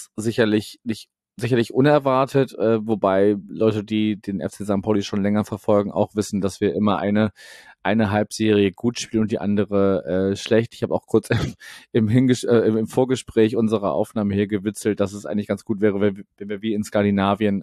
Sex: male